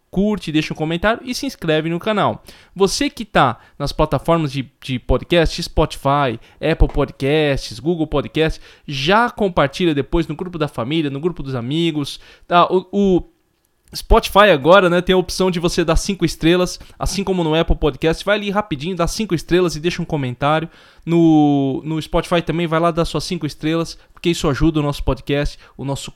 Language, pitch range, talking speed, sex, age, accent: Portuguese, 135-170 Hz, 185 wpm, male, 20-39, Brazilian